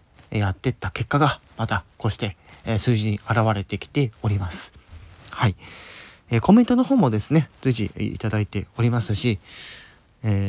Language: Japanese